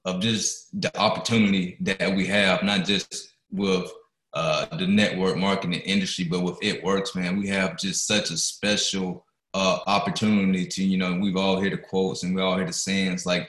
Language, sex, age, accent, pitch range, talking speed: English, male, 20-39, American, 95-115 Hz, 190 wpm